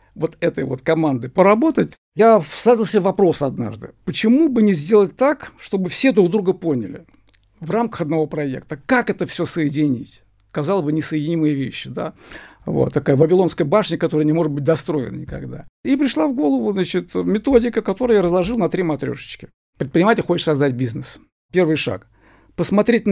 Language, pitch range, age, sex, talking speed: Russian, 150-215 Hz, 50-69, male, 160 wpm